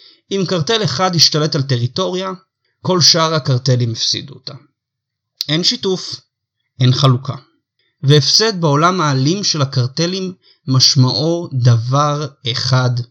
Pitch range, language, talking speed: 125-165 Hz, Hebrew, 105 wpm